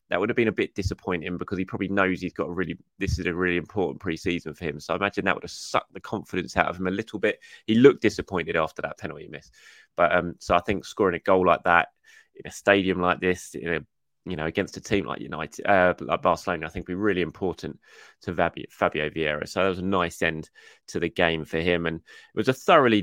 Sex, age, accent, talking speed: male, 20-39, British, 255 wpm